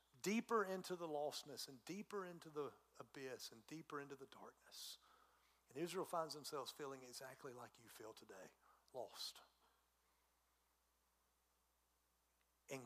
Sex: male